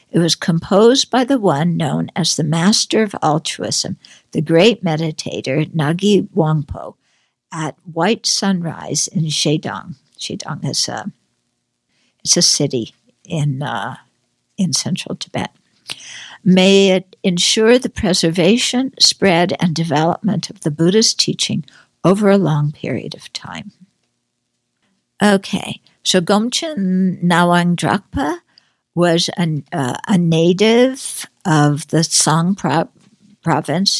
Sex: female